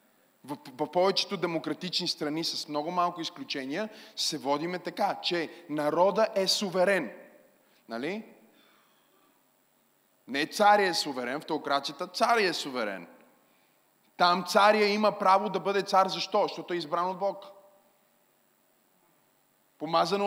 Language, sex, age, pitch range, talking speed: Bulgarian, male, 30-49, 185-250 Hz, 115 wpm